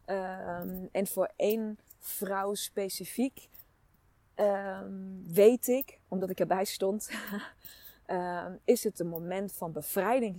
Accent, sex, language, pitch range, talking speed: Dutch, female, Dutch, 170-210 Hz, 115 wpm